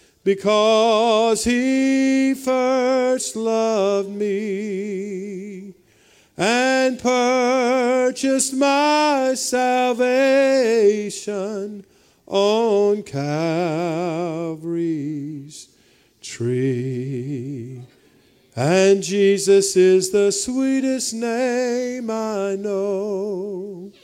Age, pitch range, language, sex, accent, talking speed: 40-59, 145-220 Hz, English, male, American, 50 wpm